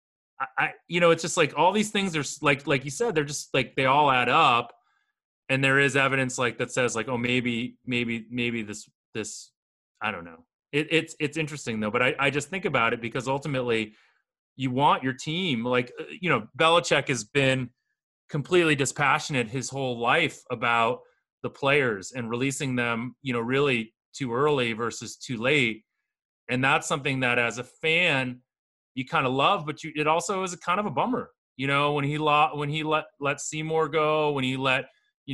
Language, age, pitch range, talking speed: English, 30-49, 125-155 Hz, 195 wpm